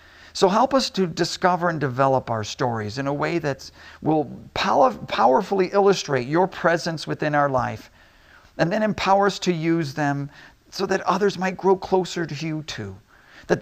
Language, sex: English, male